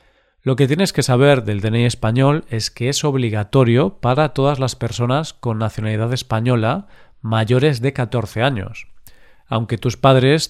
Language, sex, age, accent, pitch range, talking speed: Spanish, male, 40-59, Spanish, 110-135 Hz, 150 wpm